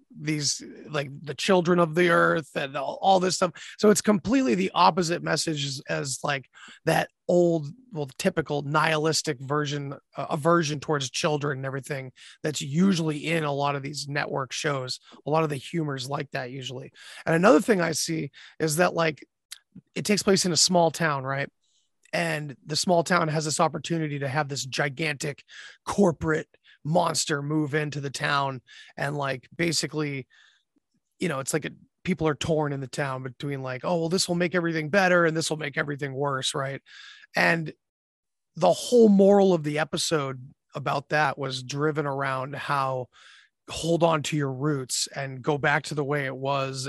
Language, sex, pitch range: English, male, 140-170 Hz